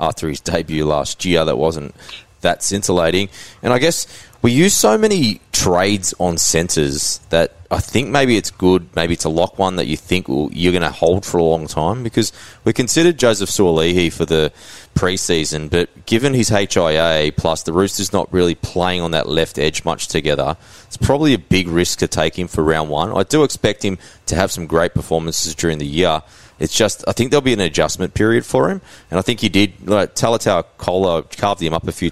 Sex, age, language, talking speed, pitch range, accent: male, 20-39, English, 210 wpm, 80-100 Hz, Australian